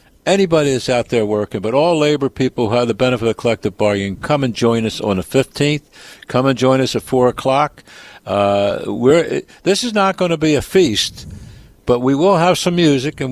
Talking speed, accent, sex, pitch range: 215 wpm, American, male, 110-140 Hz